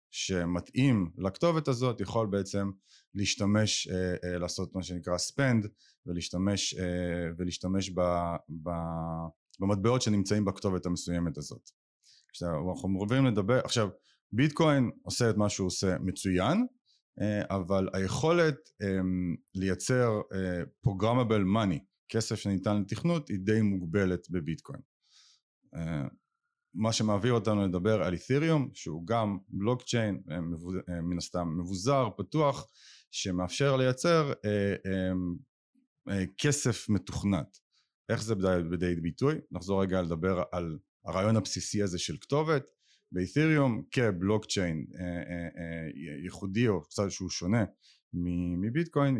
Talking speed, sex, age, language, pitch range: 110 wpm, male, 30-49, Hebrew, 90-115 Hz